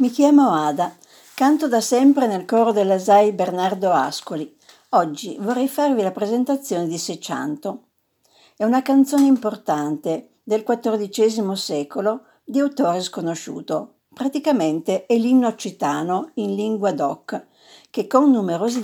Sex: female